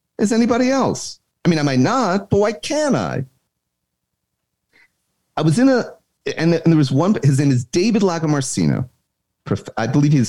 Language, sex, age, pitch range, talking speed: English, male, 40-59, 105-165 Hz, 170 wpm